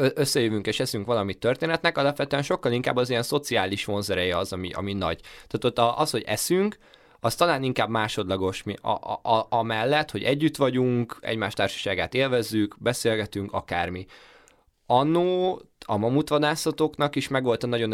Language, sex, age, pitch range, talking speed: Hungarian, male, 20-39, 100-125 Hz, 145 wpm